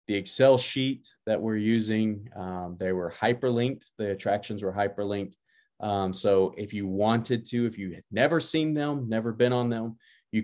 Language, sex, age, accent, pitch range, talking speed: English, male, 30-49, American, 100-120 Hz, 180 wpm